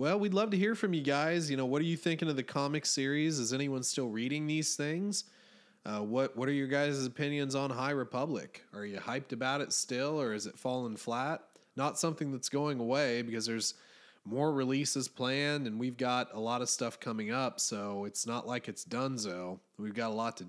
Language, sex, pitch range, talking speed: English, male, 120-150 Hz, 225 wpm